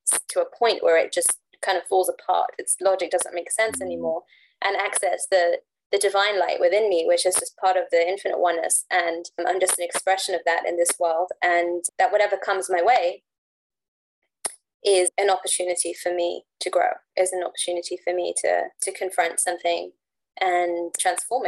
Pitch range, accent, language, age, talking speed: 175-225 Hz, British, English, 20-39, 185 wpm